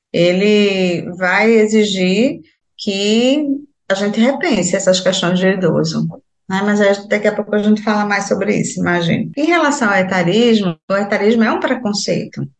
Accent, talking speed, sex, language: Brazilian, 155 wpm, female, Portuguese